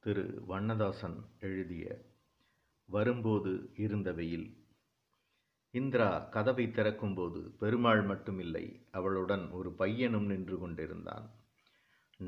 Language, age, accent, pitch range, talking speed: Tamil, 50-69, native, 95-110 Hz, 75 wpm